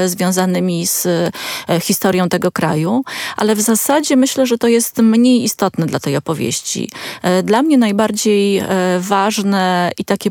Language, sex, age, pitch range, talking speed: Polish, female, 20-39, 190-220 Hz, 135 wpm